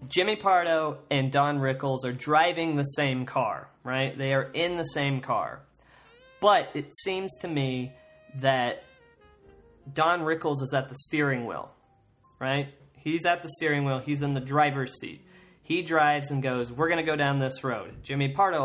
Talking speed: 175 wpm